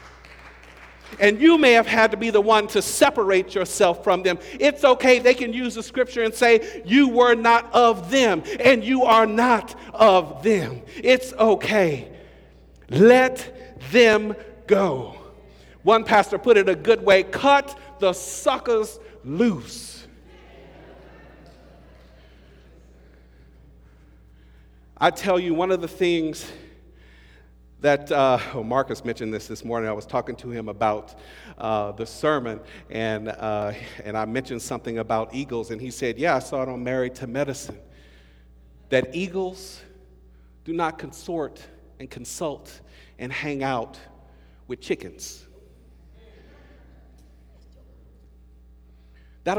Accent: American